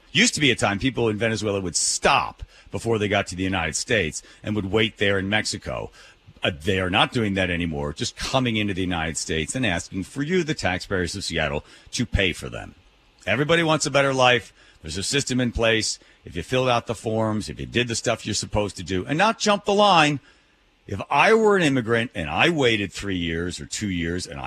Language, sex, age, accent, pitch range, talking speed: English, male, 50-69, American, 95-125 Hz, 225 wpm